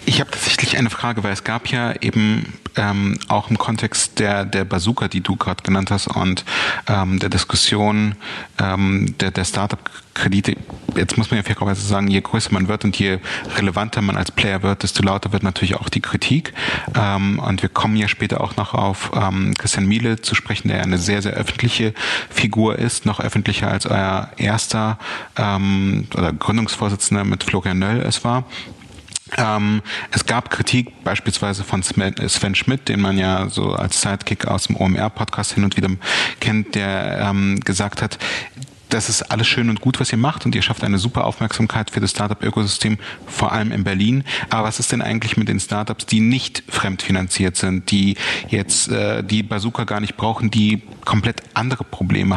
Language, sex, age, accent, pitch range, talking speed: German, male, 30-49, German, 95-110 Hz, 180 wpm